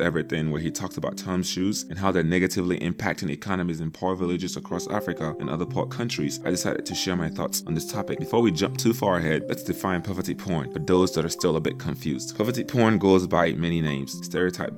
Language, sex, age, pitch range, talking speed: English, male, 30-49, 90-110 Hz, 225 wpm